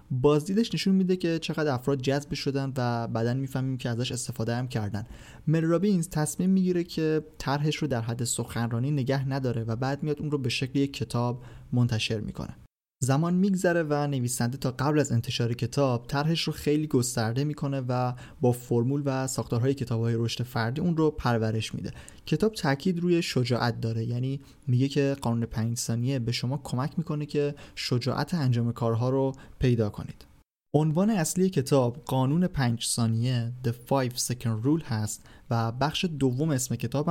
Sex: male